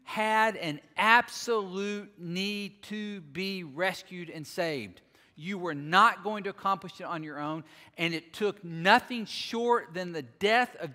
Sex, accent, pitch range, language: male, American, 125-180 Hz, English